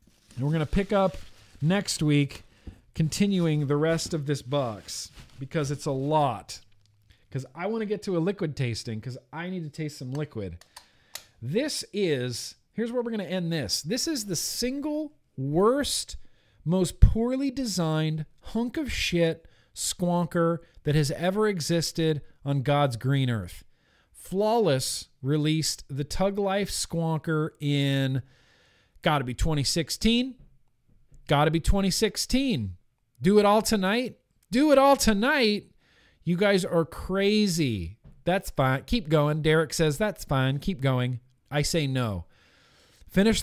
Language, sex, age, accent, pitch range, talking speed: English, male, 40-59, American, 135-200 Hz, 140 wpm